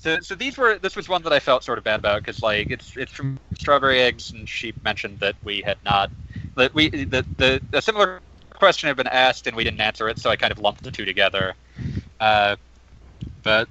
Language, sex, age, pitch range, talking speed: English, male, 30-49, 105-135 Hz, 230 wpm